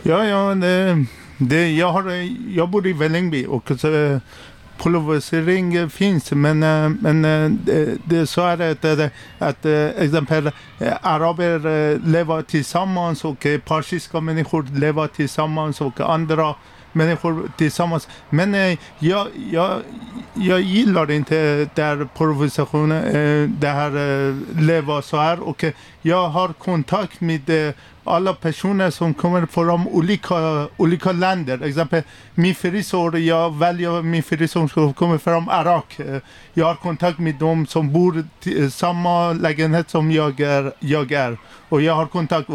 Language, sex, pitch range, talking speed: Swedish, male, 150-175 Hz, 125 wpm